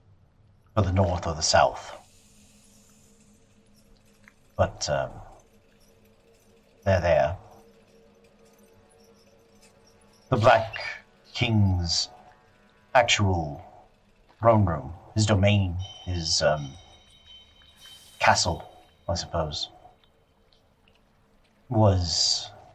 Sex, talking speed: male, 65 wpm